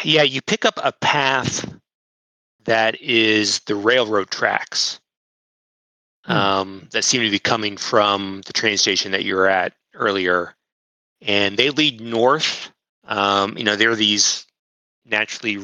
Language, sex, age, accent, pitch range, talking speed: English, male, 30-49, American, 95-120 Hz, 140 wpm